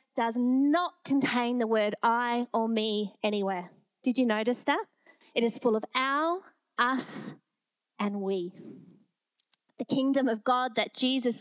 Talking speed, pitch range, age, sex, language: 140 wpm, 215-265 Hz, 30-49, female, English